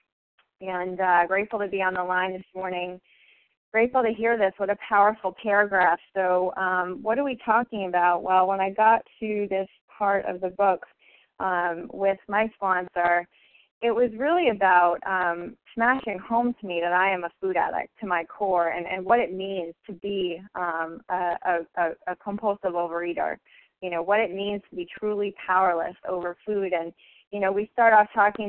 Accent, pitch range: American, 180-220 Hz